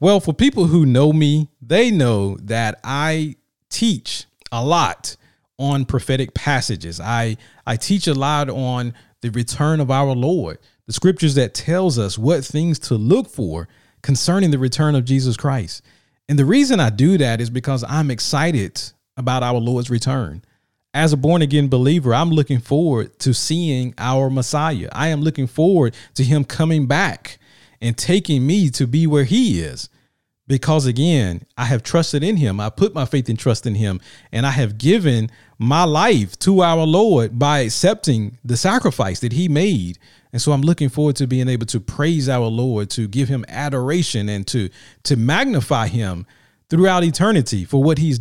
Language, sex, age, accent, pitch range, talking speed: English, male, 40-59, American, 120-155 Hz, 175 wpm